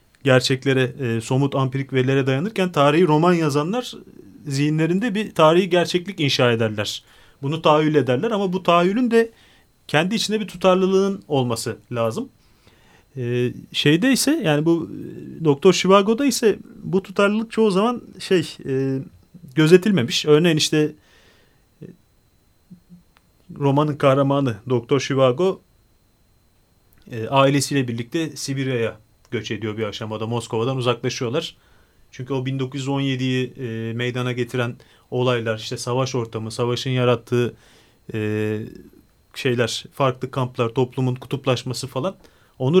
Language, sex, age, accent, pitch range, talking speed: Turkish, male, 40-59, native, 120-170 Hz, 110 wpm